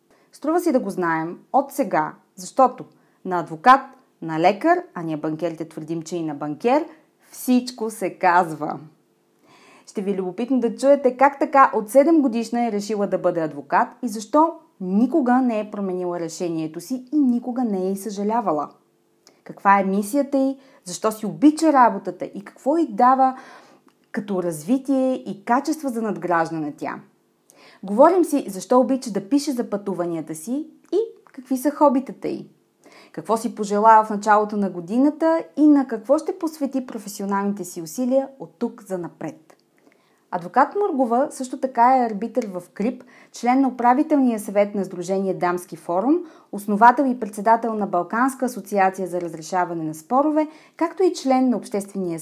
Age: 30-49